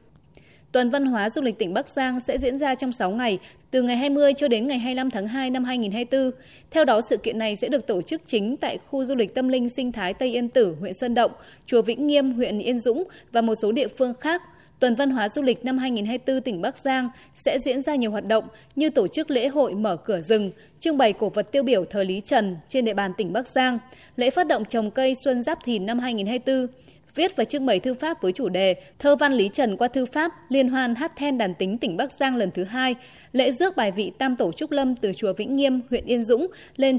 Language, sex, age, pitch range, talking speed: Vietnamese, female, 20-39, 220-275 Hz, 250 wpm